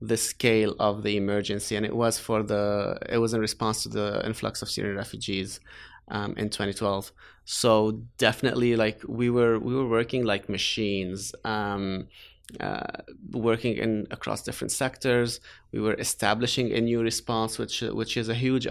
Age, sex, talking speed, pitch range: 20-39, male, 165 wpm, 100-115 Hz